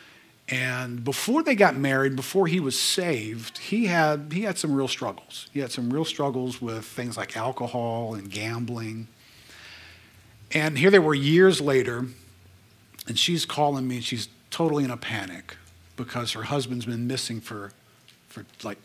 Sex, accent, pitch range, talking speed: male, American, 115-150 Hz, 160 wpm